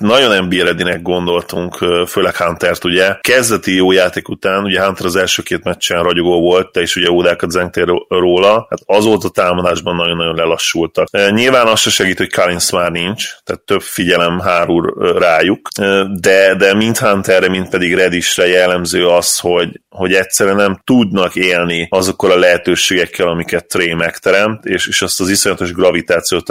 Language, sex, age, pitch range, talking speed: Hungarian, male, 30-49, 85-100 Hz, 160 wpm